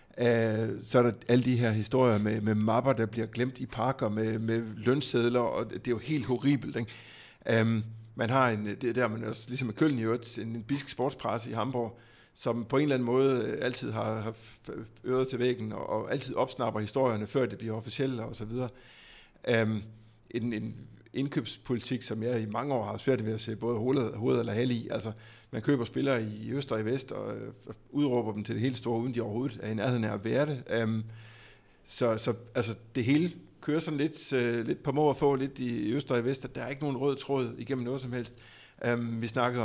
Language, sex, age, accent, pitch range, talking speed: Danish, male, 60-79, native, 110-130 Hz, 220 wpm